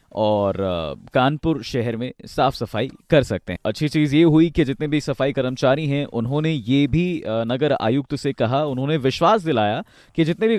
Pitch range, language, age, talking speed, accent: 115-160 Hz, Hindi, 20-39, 180 wpm, native